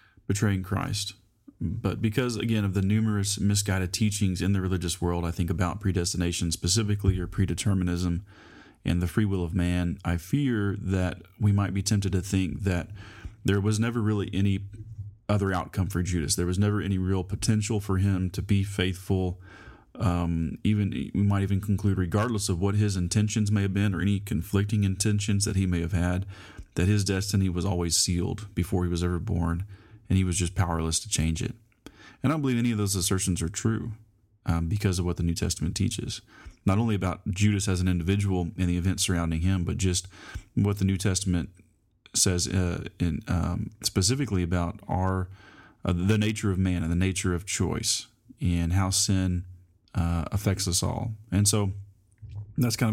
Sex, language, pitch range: male, English, 90-105 Hz